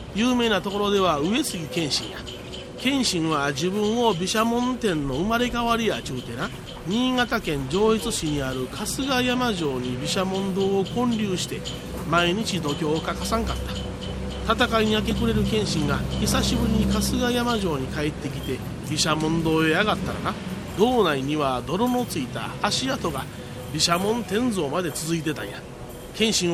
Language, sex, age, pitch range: Japanese, male, 40-59, 150-225 Hz